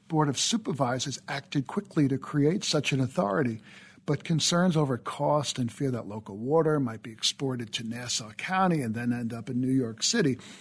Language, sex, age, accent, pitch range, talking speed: English, male, 60-79, American, 125-165 Hz, 185 wpm